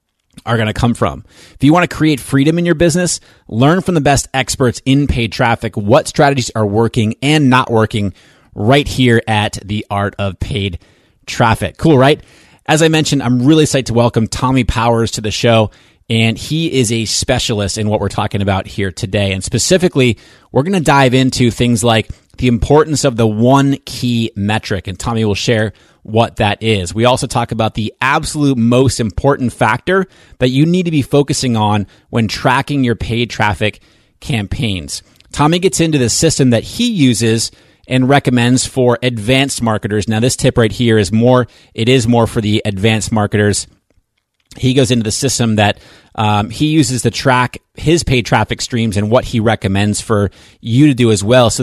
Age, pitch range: 30-49, 105-130 Hz